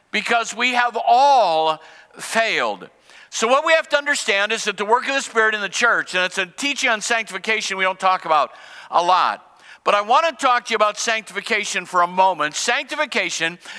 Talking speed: 200 wpm